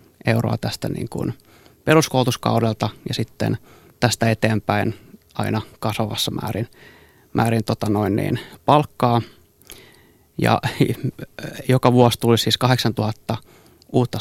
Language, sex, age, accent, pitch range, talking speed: Finnish, male, 20-39, native, 110-125 Hz, 100 wpm